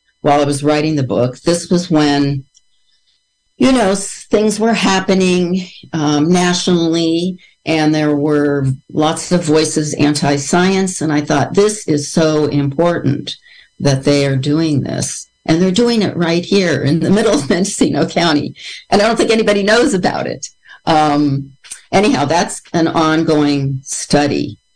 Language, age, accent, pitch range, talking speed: English, 50-69, American, 135-170 Hz, 150 wpm